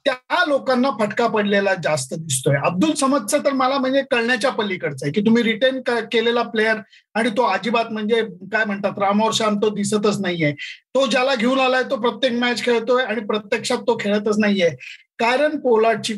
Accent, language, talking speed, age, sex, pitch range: native, Marathi, 165 wpm, 50-69, male, 210-255 Hz